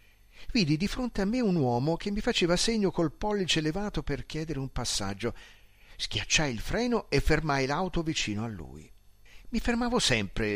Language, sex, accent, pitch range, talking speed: Italian, male, native, 120-180 Hz, 170 wpm